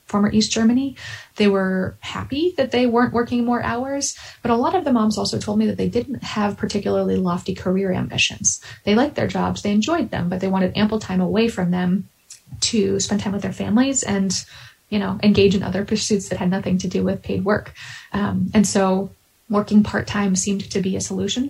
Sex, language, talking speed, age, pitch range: female, English, 210 wpm, 20-39, 185-215 Hz